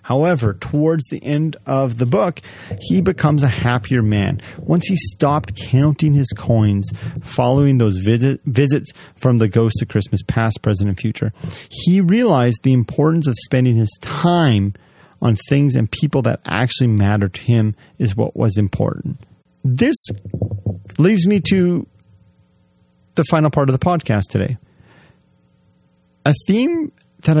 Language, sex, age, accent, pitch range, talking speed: English, male, 30-49, American, 105-145 Hz, 145 wpm